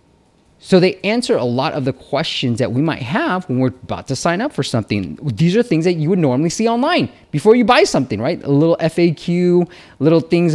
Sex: male